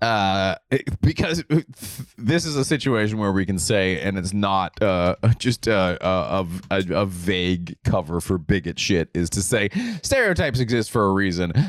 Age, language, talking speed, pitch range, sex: 30-49, English, 165 wpm, 80-100 Hz, male